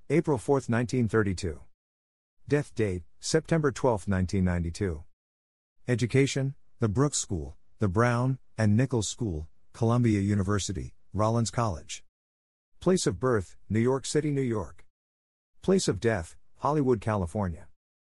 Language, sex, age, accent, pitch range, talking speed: English, male, 50-69, American, 85-115 Hz, 115 wpm